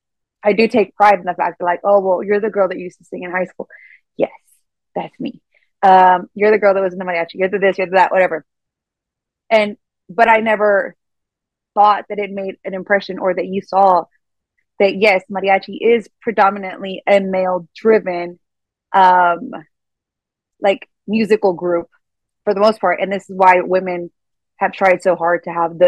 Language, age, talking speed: English, 20-39, 190 wpm